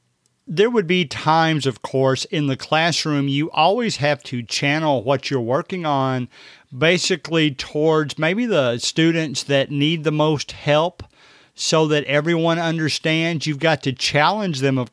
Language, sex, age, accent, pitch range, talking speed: English, male, 50-69, American, 140-170 Hz, 155 wpm